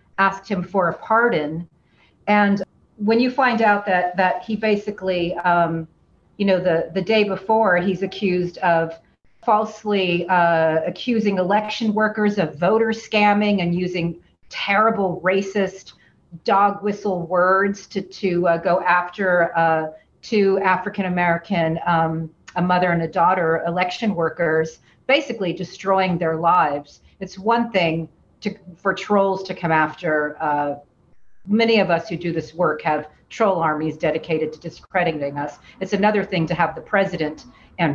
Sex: female